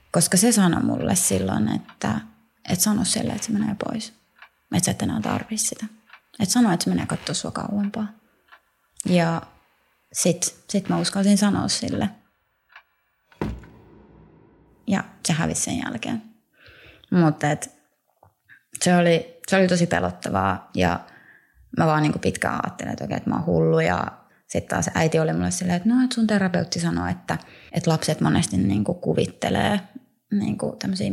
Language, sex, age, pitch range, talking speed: Finnish, female, 20-39, 165-215 Hz, 150 wpm